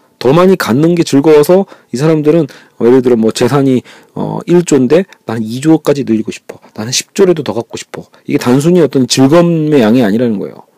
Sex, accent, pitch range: male, native, 125-175 Hz